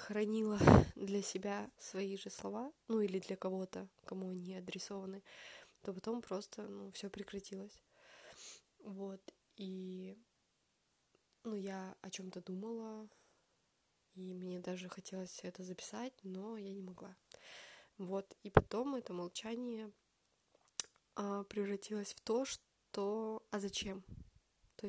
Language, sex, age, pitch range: Russian, female, 20-39, 195-215 Hz